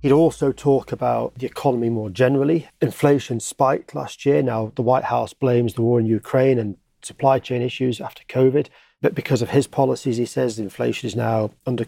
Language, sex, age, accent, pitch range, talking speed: English, male, 30-49, British, 115-135 Hz, 190 wpm